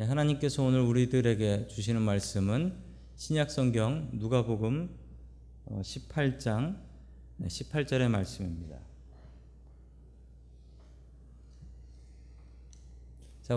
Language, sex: Korean, male